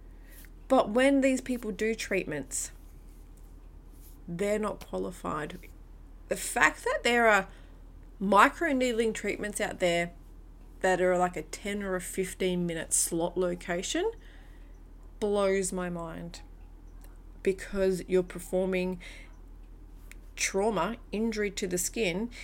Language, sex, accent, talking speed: English, female, Australian, 105 wpm